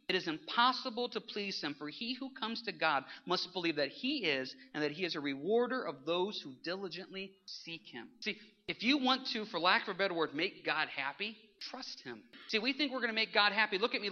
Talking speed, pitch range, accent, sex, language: 240 wpm, 135-210 Hz, American, male, English